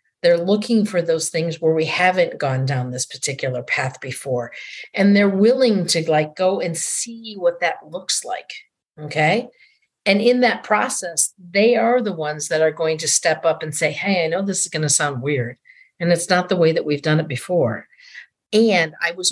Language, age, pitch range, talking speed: English, 50-69, 160-215 Hz, 200 wpm